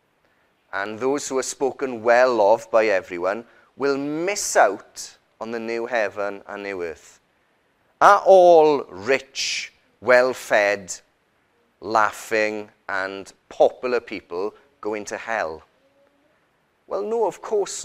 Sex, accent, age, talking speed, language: male, British, 30-49, 120 wpm, English